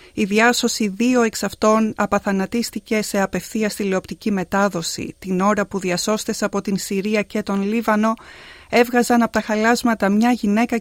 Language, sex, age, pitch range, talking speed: Greek, female, 30-49, 185-235 Hz, 145 wpm